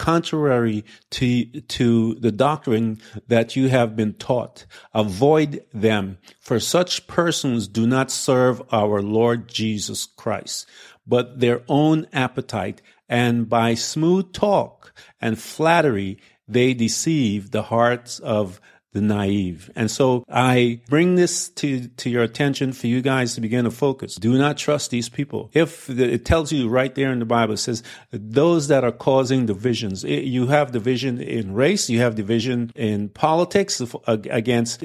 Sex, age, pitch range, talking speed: male, 50-69, 110-140 Hz, 155 wpm